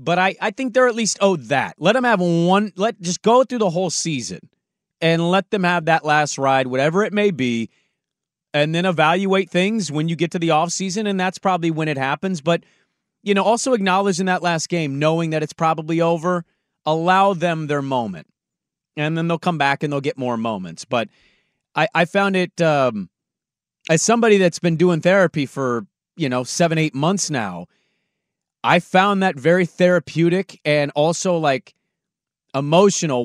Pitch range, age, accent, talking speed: 145-195 Hz, 30-49, American, 185 wpm